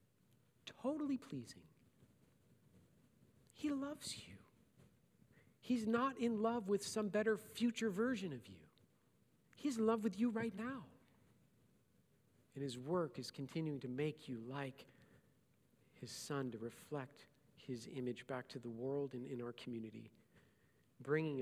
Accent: American